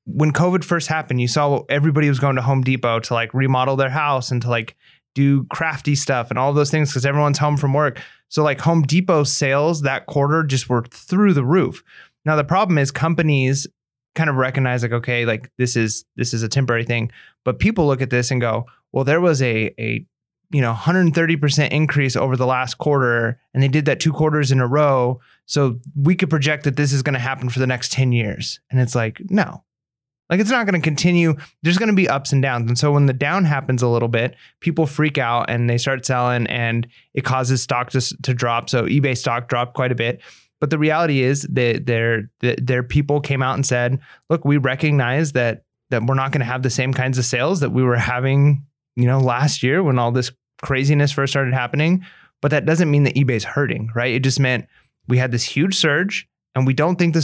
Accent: American